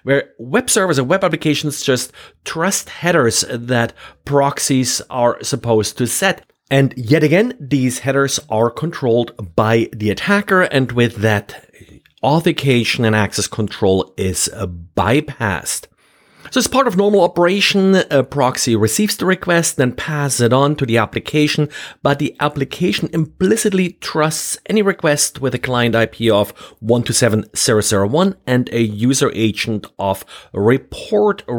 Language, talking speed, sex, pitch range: English, 145 wpm, male, 110-150 Hz